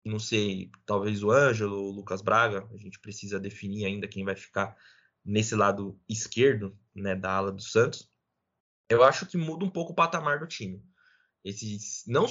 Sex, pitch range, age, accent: male, 105-145 Hz, 20-39, Brazilian